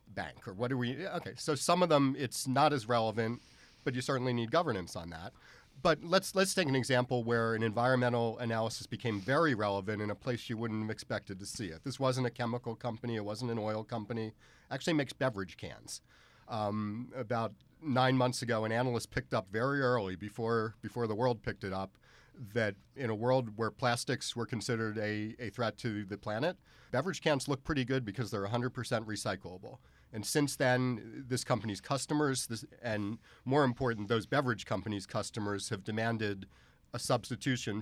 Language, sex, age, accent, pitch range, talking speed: English, male, 40-59, American, 105-130 Hz, 185 wpm